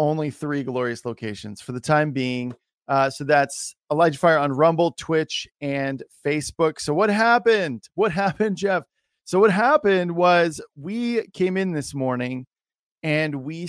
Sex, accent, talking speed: male, American, 155 wpm